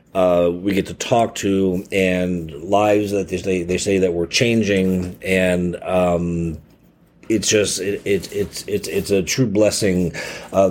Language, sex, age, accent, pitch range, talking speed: English, male, 40-59, American, 95-115 Hz, 165 wpm